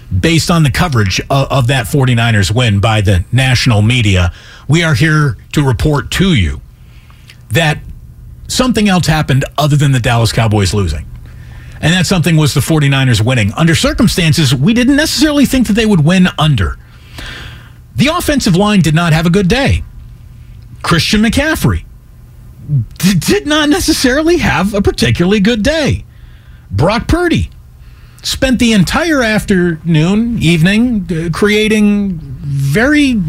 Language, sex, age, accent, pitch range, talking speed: English, male, 40-59, American, 135-195 Hz, 135 wpm